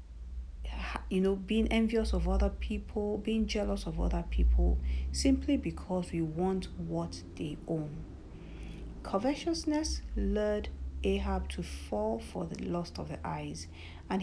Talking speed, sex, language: 130 wpm, female, English